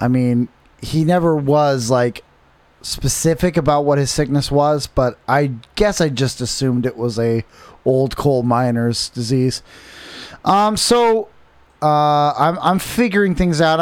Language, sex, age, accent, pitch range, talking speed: English, male, 20-39, American, 130-170 Hz, 145 wpm